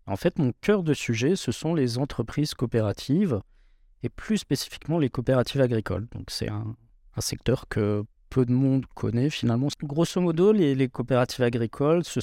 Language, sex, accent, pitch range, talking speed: French, male, French, 115-140 Hz, 170 wpm